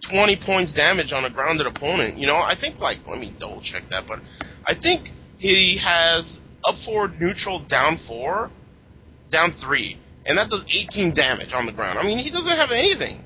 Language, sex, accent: English, male, American